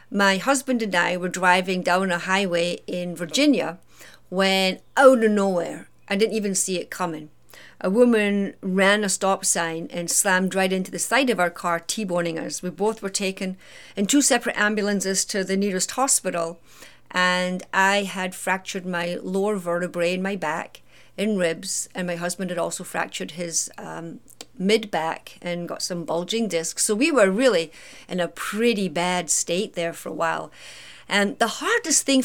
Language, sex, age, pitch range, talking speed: English, female, 50-69, 175-230 Hz, 175 wpm